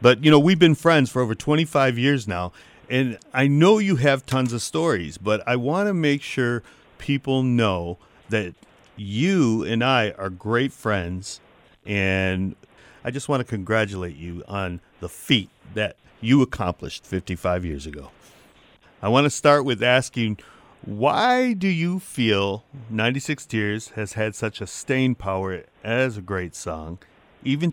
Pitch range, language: 105-140 Hz, English